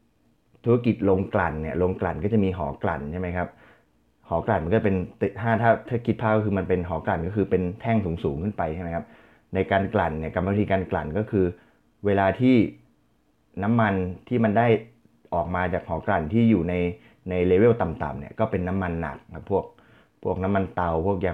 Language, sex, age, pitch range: Thai, male, 20-39, 85-110 Hz